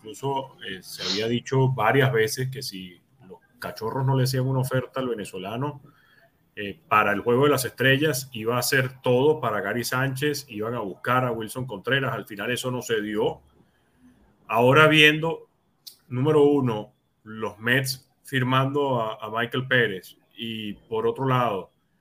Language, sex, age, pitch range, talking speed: Spanish, male, 30-49, 115-145 Hz, 160 wpm